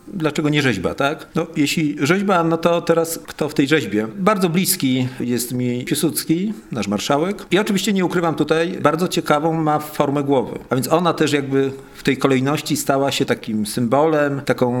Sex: male